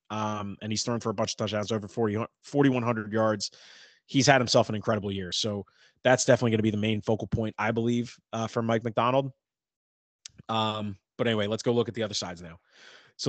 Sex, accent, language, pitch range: male, American, English, 105-125 Hz